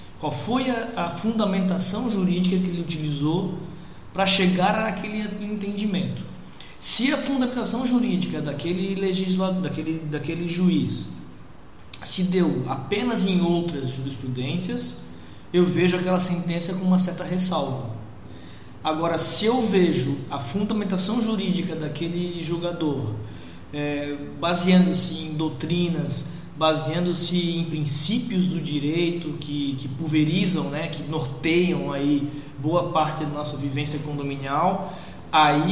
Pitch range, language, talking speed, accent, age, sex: 155-195 Hz, Portuguese, 115 wpm, Brazilian, 20-39, male